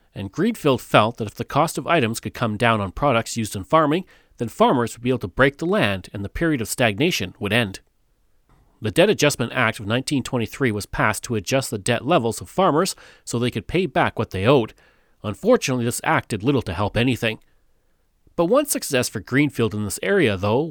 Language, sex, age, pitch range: English, male, 40-59, 110-140 Hz